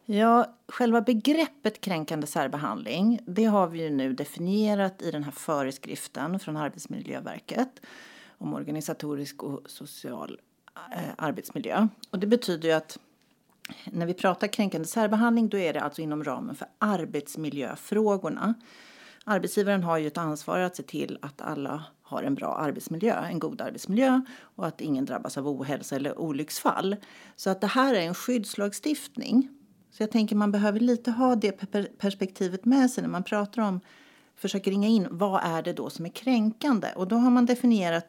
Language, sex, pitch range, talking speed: Swedish, female, 175-240 Hz, 160 wpm